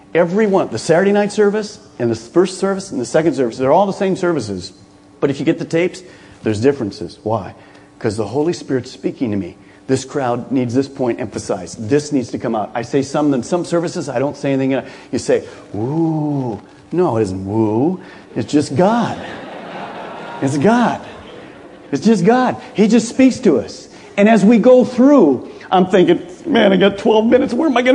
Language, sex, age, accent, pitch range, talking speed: English, male, 40-59, American, 130-195 Hz, 200 wpm